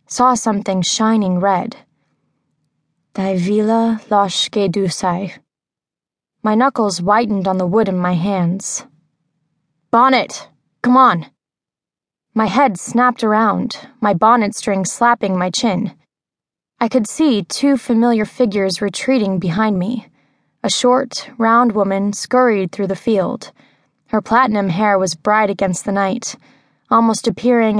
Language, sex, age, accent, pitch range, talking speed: English, female, 20-39, American, 195-235 Hz, 115 wpm